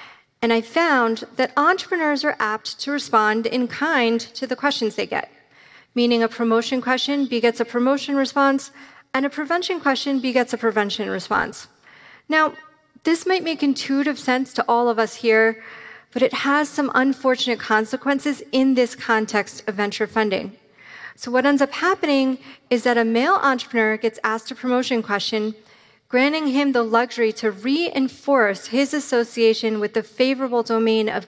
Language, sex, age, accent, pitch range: Korean, female, 30-49, American, 225-275 Hz